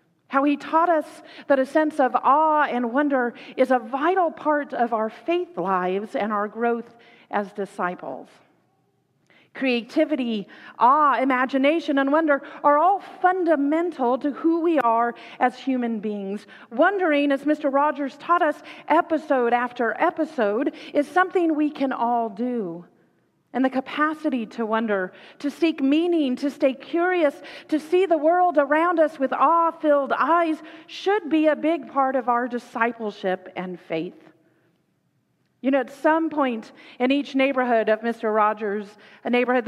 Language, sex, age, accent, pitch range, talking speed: English, female, 40-59, American, 235-320 Hz, 145 wpm